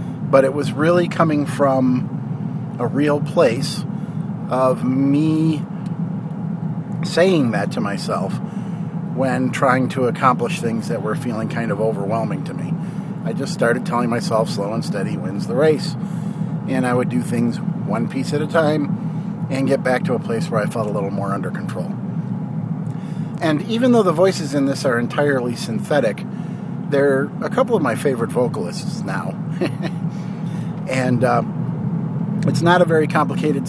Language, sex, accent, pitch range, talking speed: English, male, American, 155-185 Hz, 155 wpm